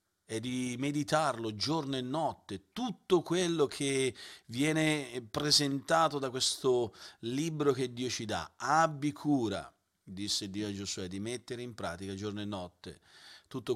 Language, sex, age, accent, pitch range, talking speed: Italian, male, 40-59, native, 110-150 Hz, 140 wpm